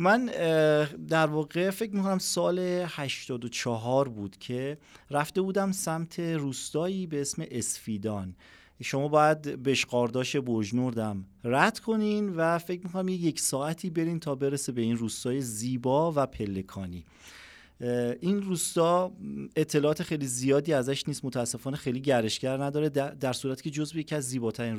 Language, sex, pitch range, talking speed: Persian, male, 125-170 Hz, 135 wpm